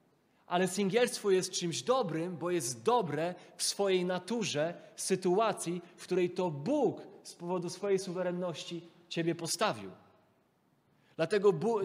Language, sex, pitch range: Polish, male, 125-185 Hz